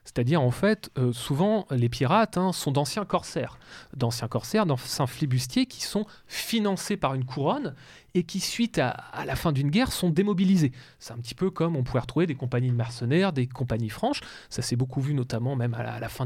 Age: 30-49